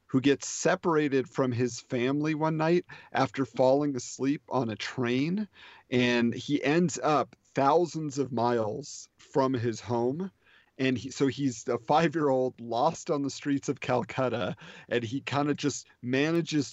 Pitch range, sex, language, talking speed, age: 115-135 Hz, male, English, 160 wpm, 40-59